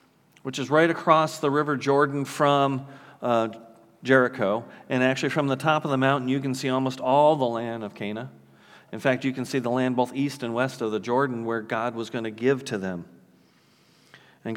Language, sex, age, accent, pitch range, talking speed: English, male, 40-59, American, 115-140 Hz, 205 wpm